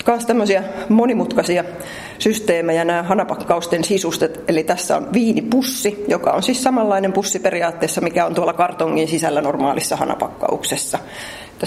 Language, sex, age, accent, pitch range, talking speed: Finnish, female, 30-49, native, 165-195 Hz, 125 wpm